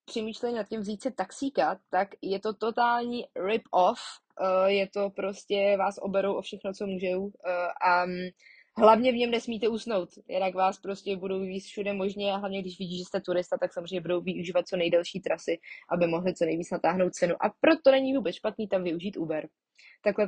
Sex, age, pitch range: female, 20-39, 180-210 Hz